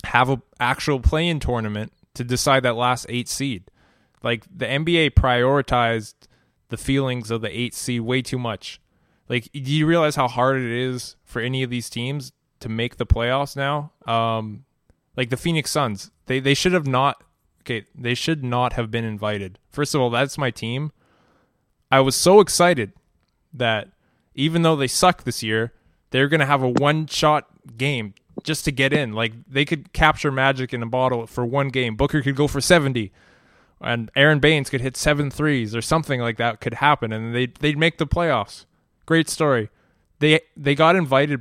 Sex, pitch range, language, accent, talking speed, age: male, 120-145 Hz, English, American, 185 wpm, 20-39